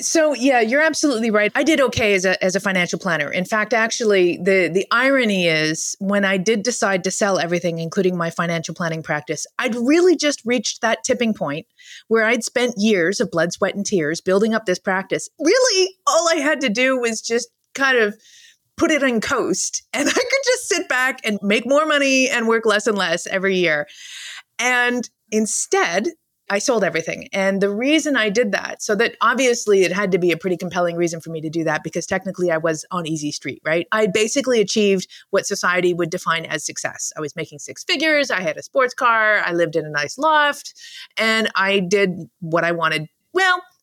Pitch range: 180-270 Hz